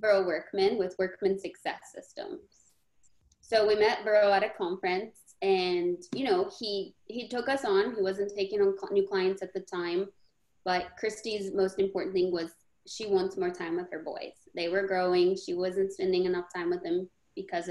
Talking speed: 185 wpm